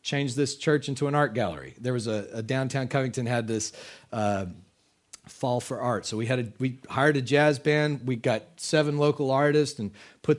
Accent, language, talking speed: American, English, 200 wpm